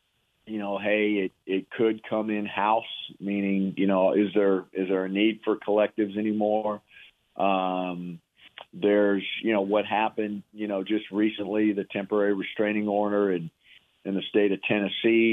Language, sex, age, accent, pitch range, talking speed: English, male, 40-59, American, 95-110 Hz, 160 wpm